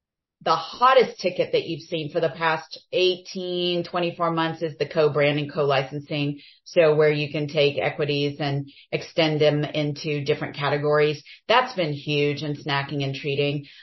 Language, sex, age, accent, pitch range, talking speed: English, female, 30-49, American, 150-185 Hz, 150 wpm